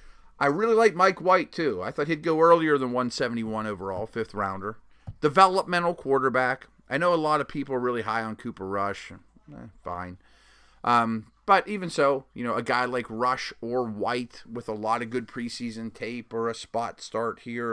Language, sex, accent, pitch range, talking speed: English, male, American, 110-150 Hz, 185 wpm